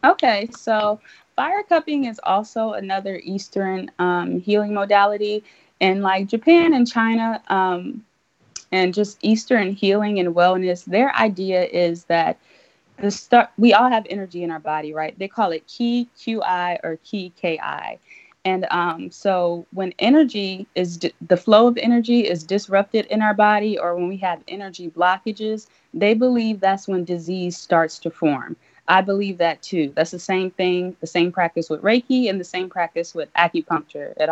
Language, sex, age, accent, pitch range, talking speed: English, female, 20-39, American, 170-210 Hz, 165 wpm